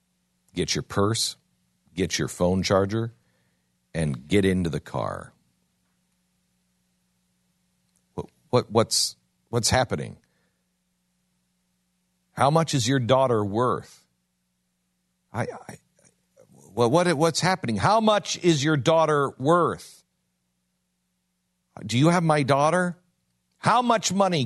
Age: 60-79